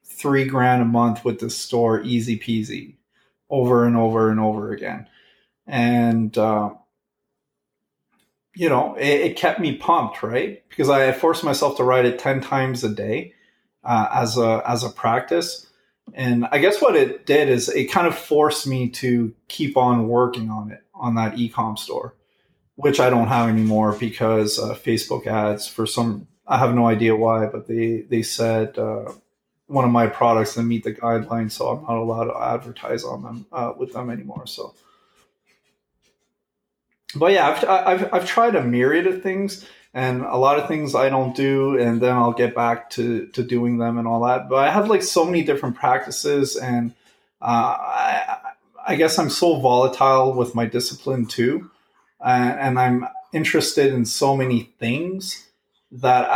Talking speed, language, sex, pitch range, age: 175 wpm, English, male, 115-145 Hz, 30-49